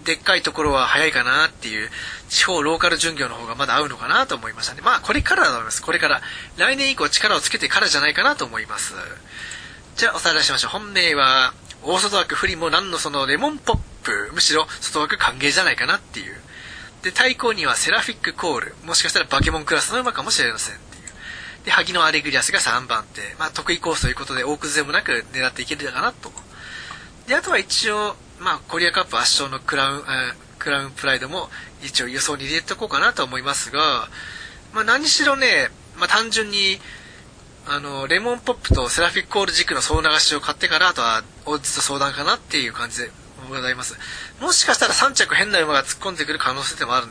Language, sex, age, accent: Japanese, male, 20-39, native